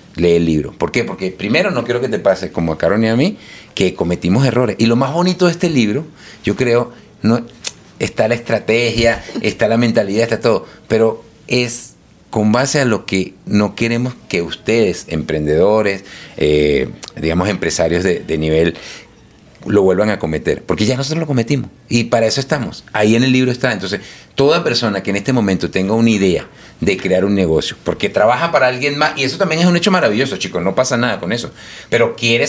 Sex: male